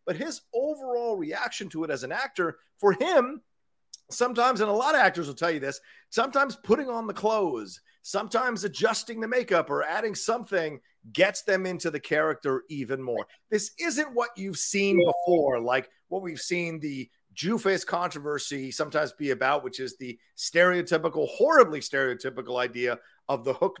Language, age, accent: English, 40-59, American